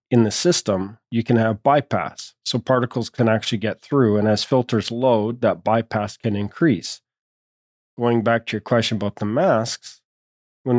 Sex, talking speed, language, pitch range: male, 165 wpm, English, 105-125 Hz